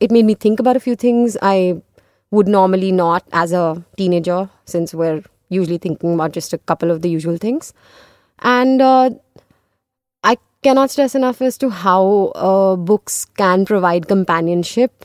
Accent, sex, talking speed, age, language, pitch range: native, female, 165 wpm, 20-39, Hindi, 175-220 Hz